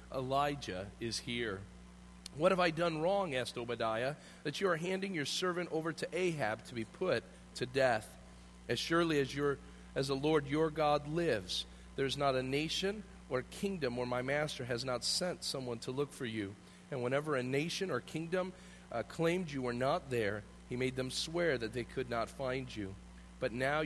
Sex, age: male, 40-59